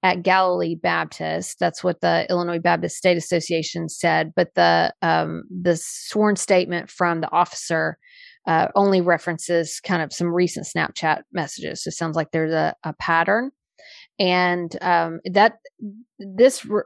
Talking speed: 145 wpm